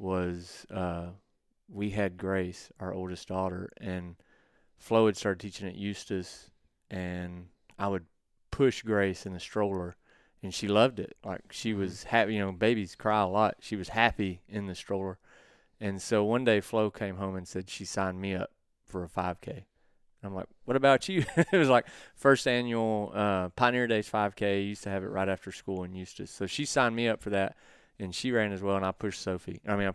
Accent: American